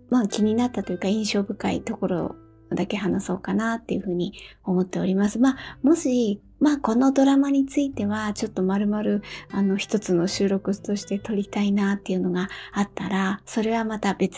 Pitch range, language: 190-235 Hz, Japanese